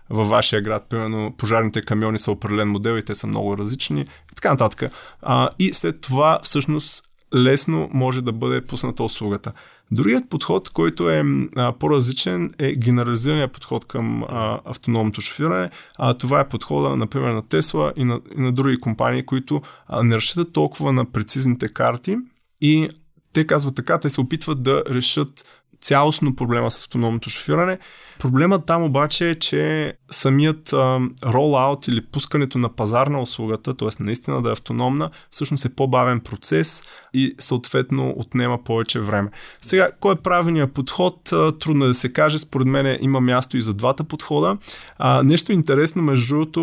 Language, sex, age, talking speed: Bulgarian, male, 20-39, 160 wpm